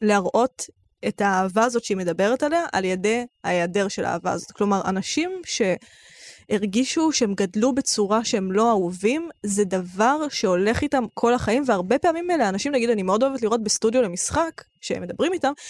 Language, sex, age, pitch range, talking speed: Hebrew, female, 20-39, 205-270 Hz, 160 wpm